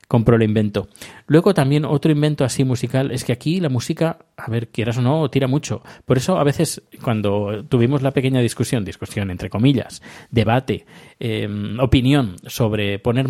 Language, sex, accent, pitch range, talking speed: Spanish, male, Spanish, 115-140 Hz, 170 wpm